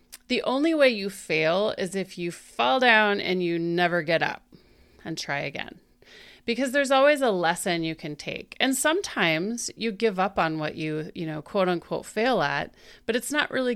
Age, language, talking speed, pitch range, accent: 30-49, English, 190 wpm, 165-225 Hz, American